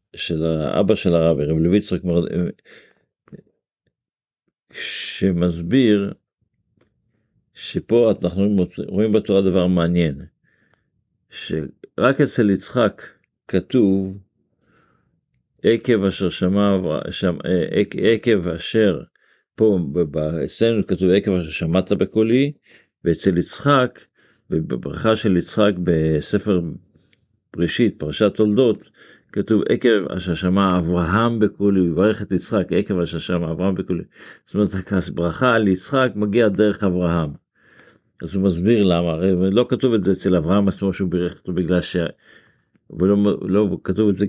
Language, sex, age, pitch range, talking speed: Hebrew, male, 50-69, 85-105 Hz, 105 wpm